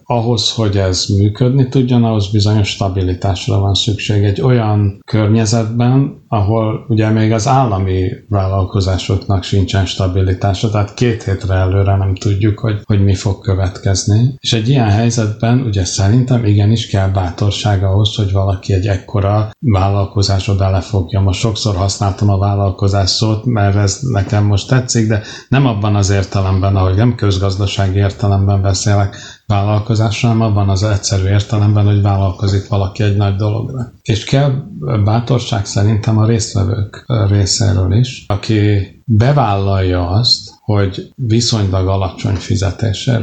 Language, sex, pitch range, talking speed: Hungarian, male, 100-115 Hz, 135 wpm